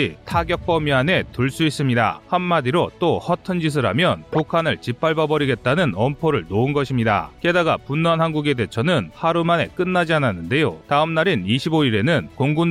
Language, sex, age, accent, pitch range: Korean, male, 30-49, native, 125-165 Hz